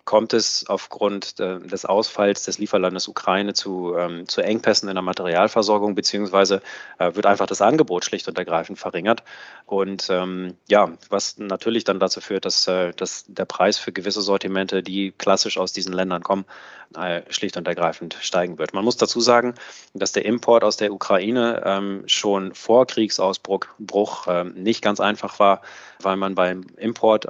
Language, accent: German, German